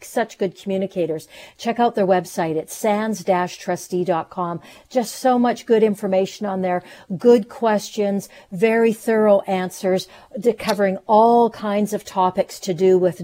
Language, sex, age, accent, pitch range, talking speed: English, female, 50-69, American, 185-225 Hz, 135 wpm